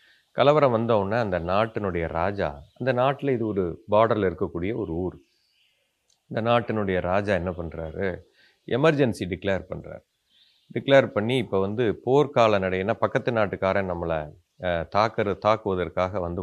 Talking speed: 120 wpm